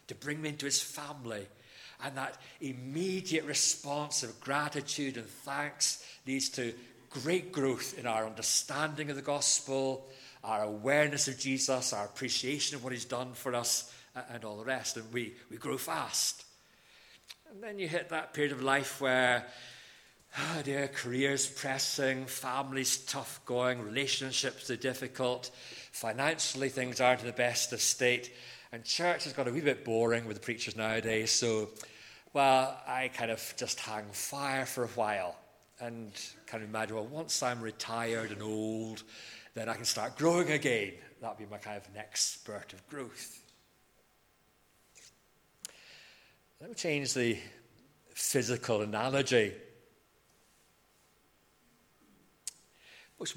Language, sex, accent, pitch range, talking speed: English, male, British, 115-140 Hz, 145 wpm